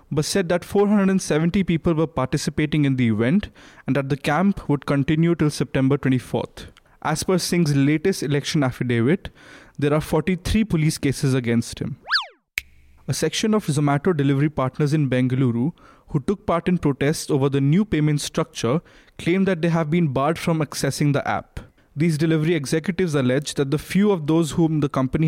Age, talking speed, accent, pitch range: 20-39, 170 wpm, Indian, 135-170 Hz